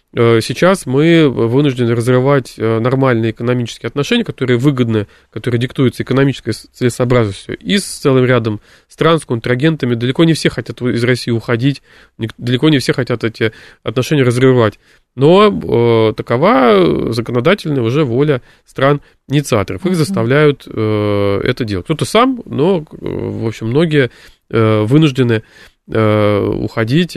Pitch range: 110-140 Hz